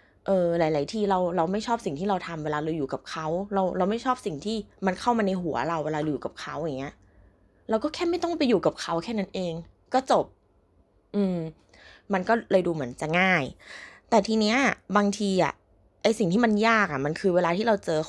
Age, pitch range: 20-39, 160-220 Hz